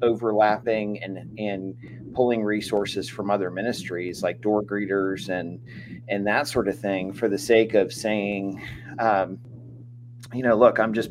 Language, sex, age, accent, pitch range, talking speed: English, male, 30-49, American, 100-120 Hz, 150 wpm